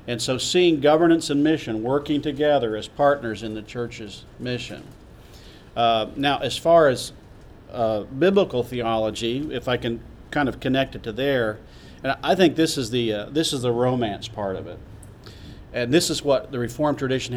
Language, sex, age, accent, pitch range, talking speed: English, male, 50-69, American, 110-140 Hz, 180 wpm